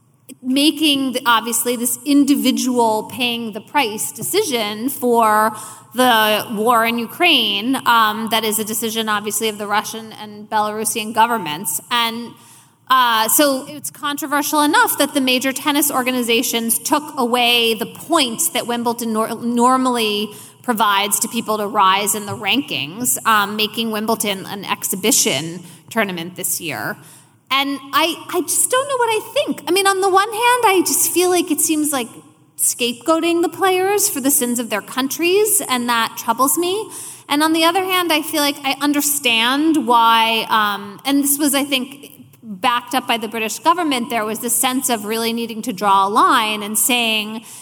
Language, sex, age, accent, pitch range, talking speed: English, female, 20-39, American, 220-290 Hz, 160 wpm